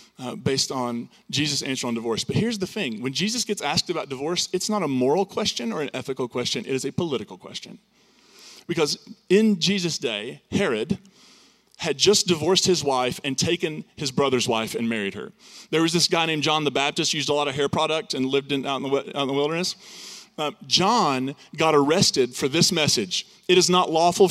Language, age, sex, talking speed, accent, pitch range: English, 30-49, male, 200 wpm, American, 135-195 Hz